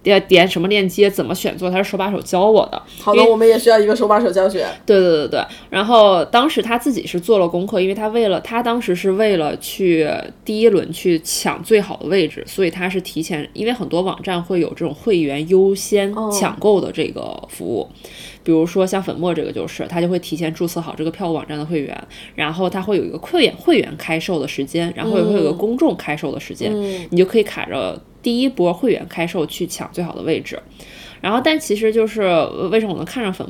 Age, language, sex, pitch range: 20-39, Chinese, female, 165-210 Hz